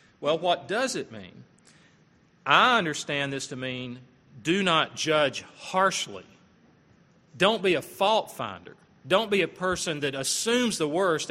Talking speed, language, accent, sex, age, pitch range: 145 wpm, English, American, male, 40-59, 135-170 Hz